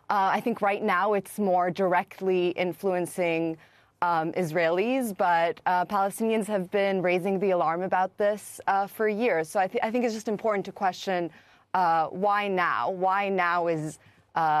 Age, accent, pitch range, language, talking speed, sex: 20-39, American, 165-195 Hz, English, 170 wpm, female